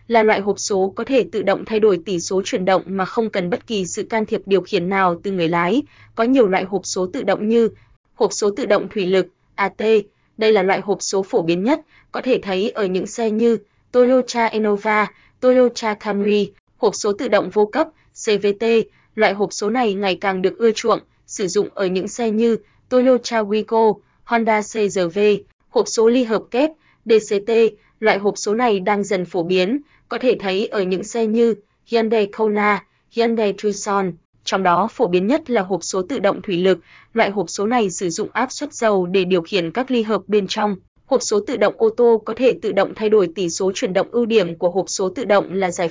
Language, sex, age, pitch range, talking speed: Vietnamese, female, 20-39, 190-230 Hz, 220 wpm